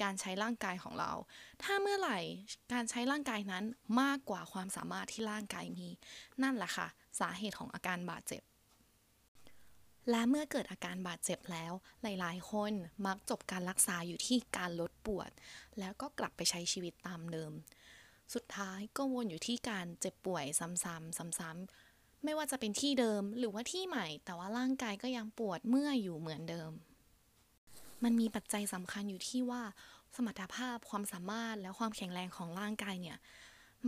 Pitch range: 185-245 Hz